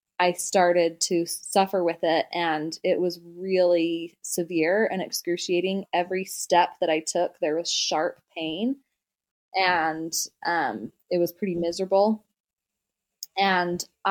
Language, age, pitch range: English, 20-39, 175-200 Hz